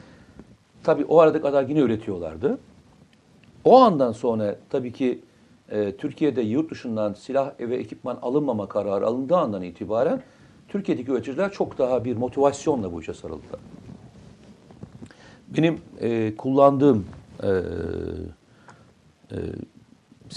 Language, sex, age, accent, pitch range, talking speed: Turkish, male, 60-79, native, 105-165 Hz, 110 wpm